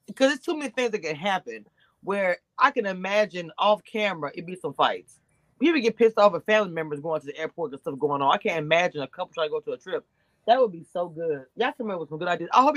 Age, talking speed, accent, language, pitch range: 20-39, 275 wpm, American, English, 180-285 Hz